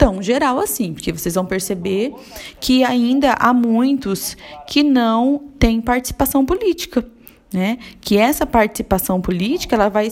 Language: Portuguese